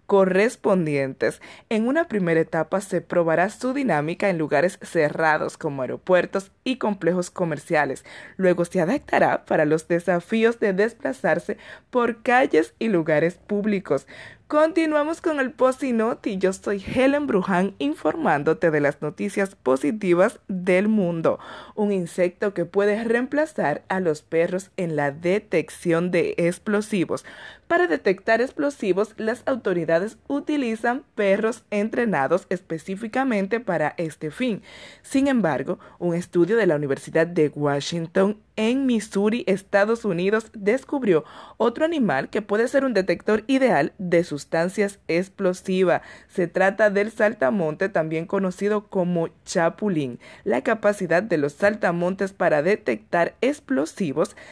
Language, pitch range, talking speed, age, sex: Spanish, 170-225 Hz, 125 wpm, 20-39, female